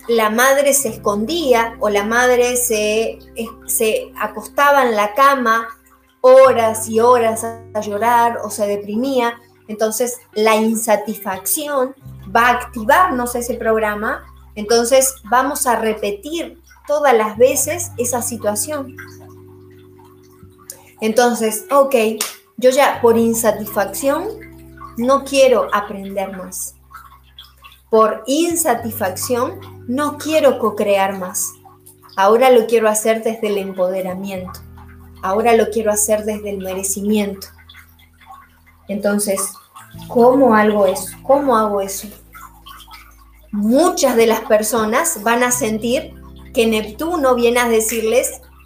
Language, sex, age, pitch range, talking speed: Spanish, female, 30-49, 200-255 Hz, 105 wpm